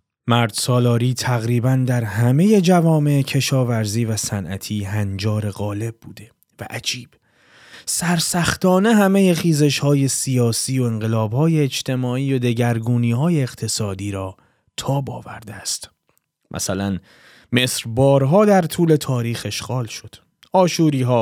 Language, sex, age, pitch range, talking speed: Persian, male, 30-49, 110-145 Hz, 110 wpm